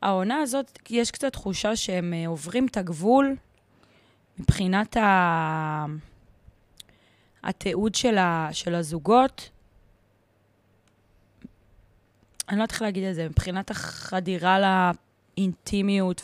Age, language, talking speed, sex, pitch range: 20-39, Hebrew, 95 wpm, female, 165-205 Hz